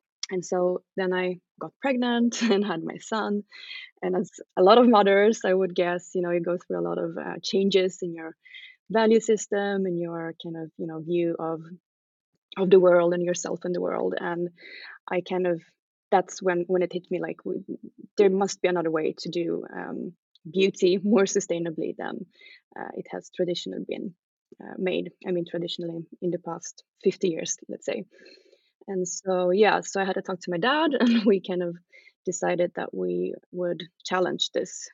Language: English